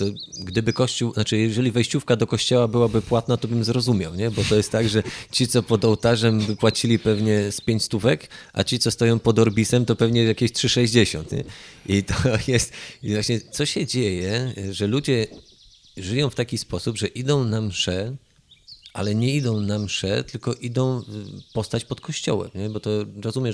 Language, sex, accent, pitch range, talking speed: Polish, male, native, 105-125 Hz, 180 wpm